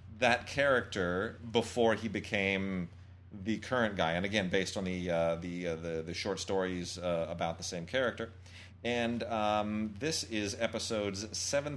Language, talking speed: English, 160 wpm